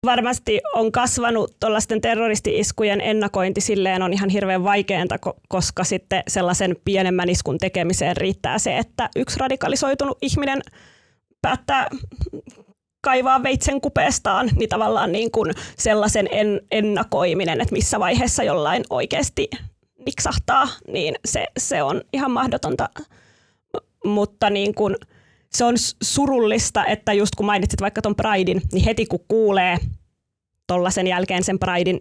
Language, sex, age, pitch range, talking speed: Finnish, female, 20-39, 185-220 Hz, 115 wpm